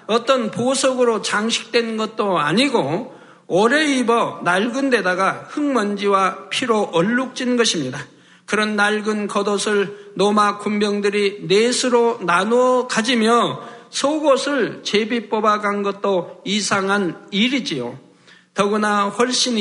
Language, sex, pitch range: Korean, male, 200-245 Hz